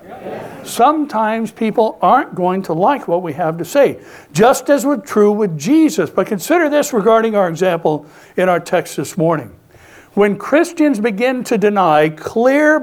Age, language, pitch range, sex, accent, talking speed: 60-79, English, 175-250 Hz, male, American, 160 wpm